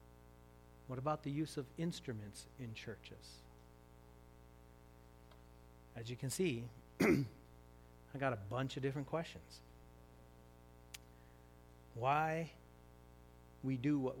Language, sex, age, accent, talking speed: English, male, 40-59, American, 95 wpm